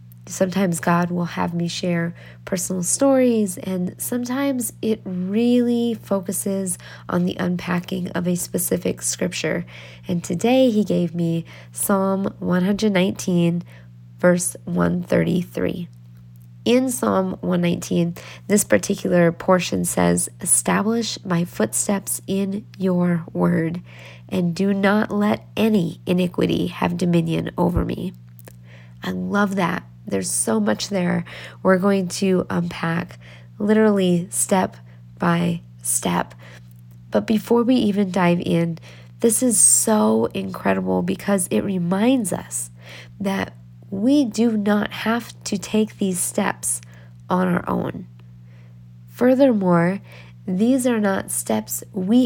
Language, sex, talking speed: English, female, 115 wpm